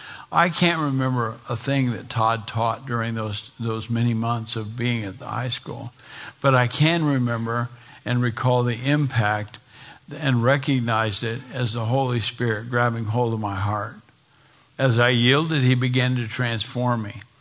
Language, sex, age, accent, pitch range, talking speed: English, male, 60-79, American, 115-135 Hz, 160 wpm